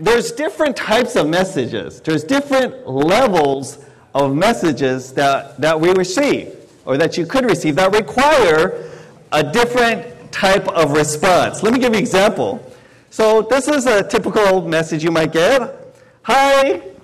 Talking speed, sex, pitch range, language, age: 150 wpm, male, 155-255 Hz, English, 40-59